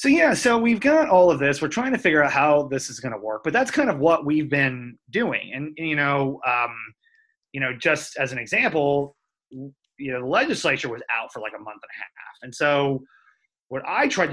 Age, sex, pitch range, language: 30-49, male, 115-145 Hz, English